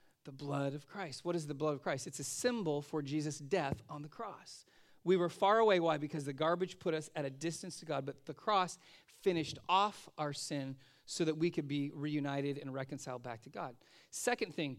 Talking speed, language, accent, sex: 220 wpm, English, American, male